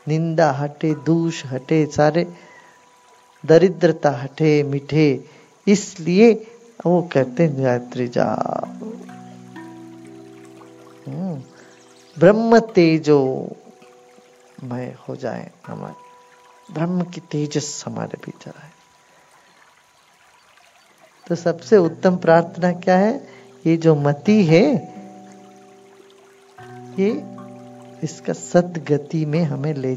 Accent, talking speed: Indian, 85 wpm